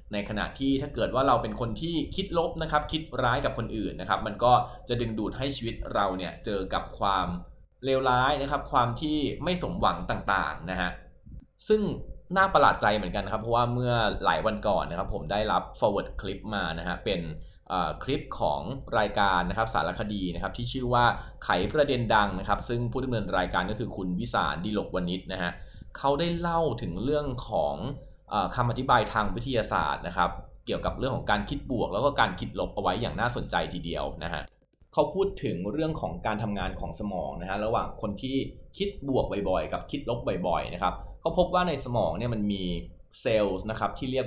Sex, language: male, Thai